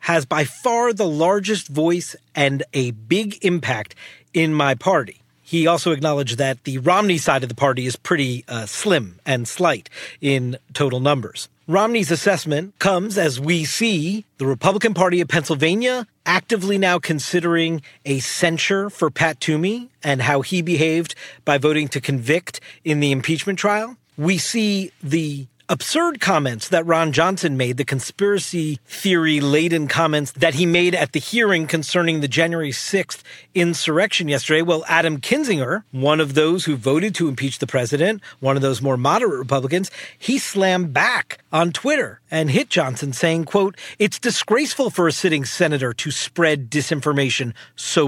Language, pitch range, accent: English, 140-190 Hz, American